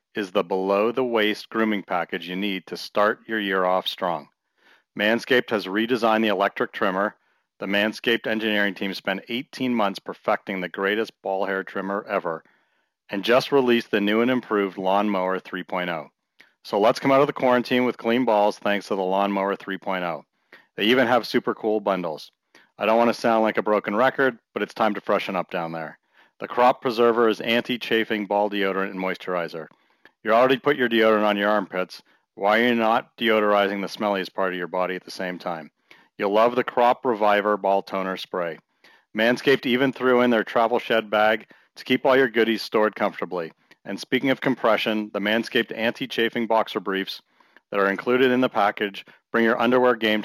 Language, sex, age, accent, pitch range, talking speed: English, male, 40-59, American, 100-120 Hz, 185 wpm